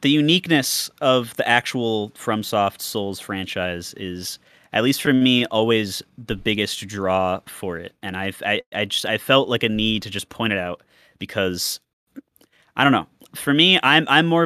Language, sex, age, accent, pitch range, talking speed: English, male, 20-39, American, 95-130 Hz, 180 wpm